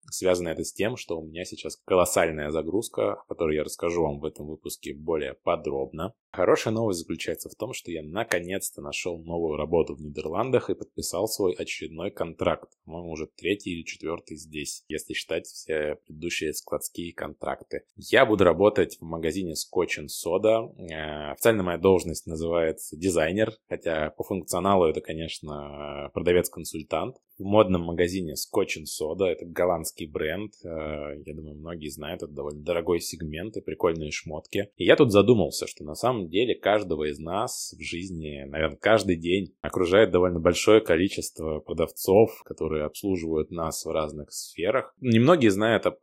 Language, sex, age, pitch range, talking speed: Russian, male, 20-39, 75-95 Hz, 155 wpm